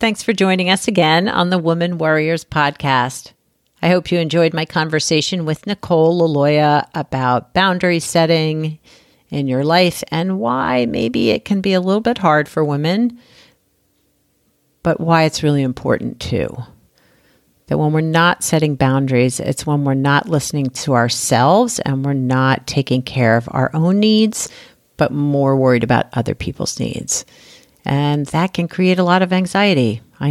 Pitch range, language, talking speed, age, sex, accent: 140-170 Hz, English, 160 wpm, 50-69, female, American